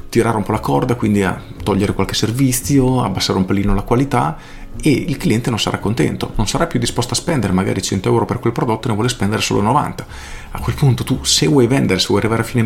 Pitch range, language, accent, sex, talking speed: 95-125 Hz, Italian, native, male, 240 wpm